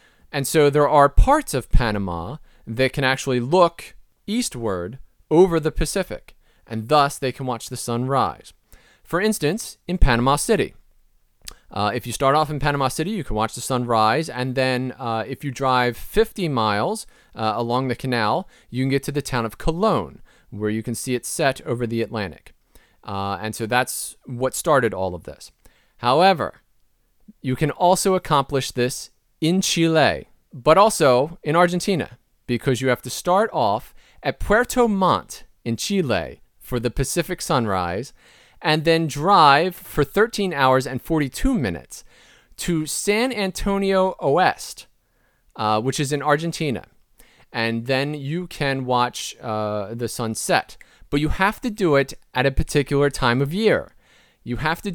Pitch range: 120-165 Hz